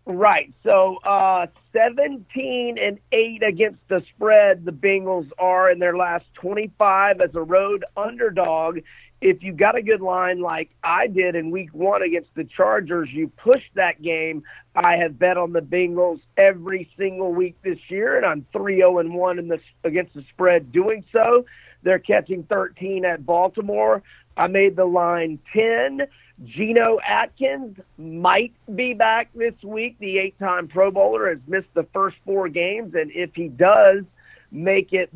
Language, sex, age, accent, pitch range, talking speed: English, male, 40-59, American, 170-205 Hz, 160 wpm